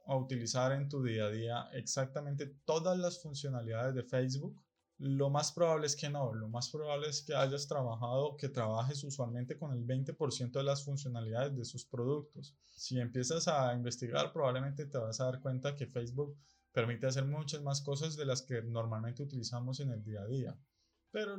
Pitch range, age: 125-150 Hz, 20-39